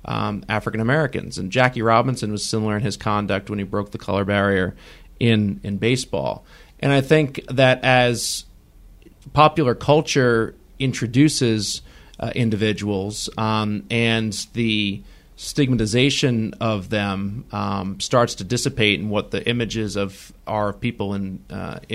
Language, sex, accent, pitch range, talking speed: English, male, American, 100-125 Hz, 135 wpm